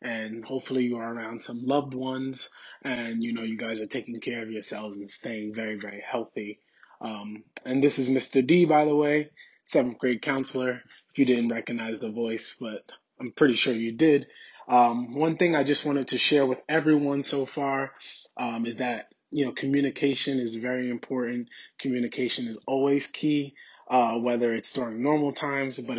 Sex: male